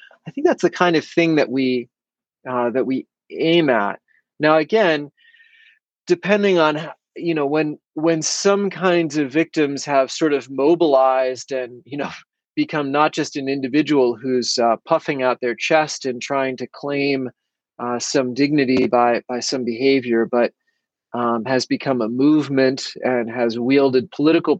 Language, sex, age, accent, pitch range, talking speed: English, male, 30-49, American, 125-150 Hz, 160 wpm